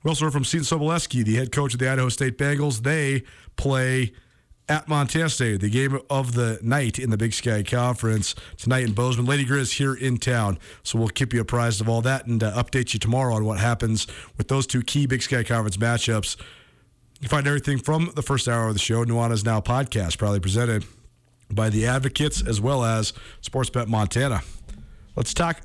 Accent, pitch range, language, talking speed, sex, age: American, 110-135 Hz, English, 200 wpm, male, 40-59